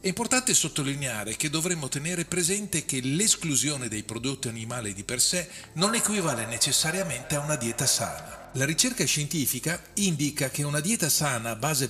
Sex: male